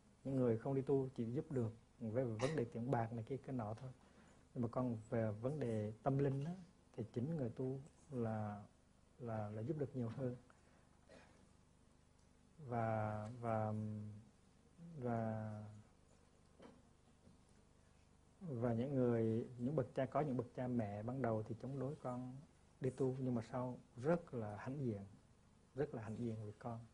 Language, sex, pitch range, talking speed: Vietnamese, male, 110-135 Hz, 165 wpm